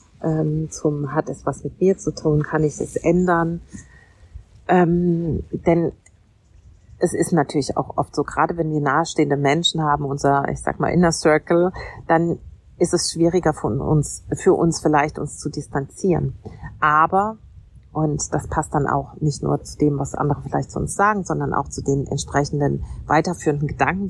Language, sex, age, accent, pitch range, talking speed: German, female, 40-59, German, 145-170 Hz, 165 wpm